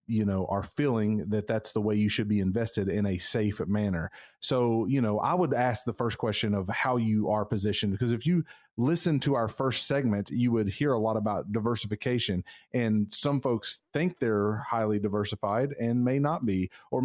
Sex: male